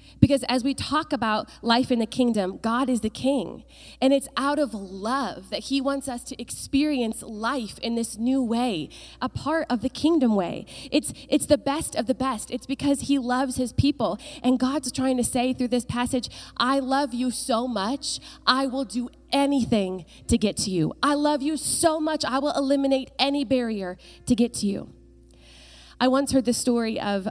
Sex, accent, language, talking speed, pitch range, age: female, American, English, 195 wpm, 195-260 Hz, 20-39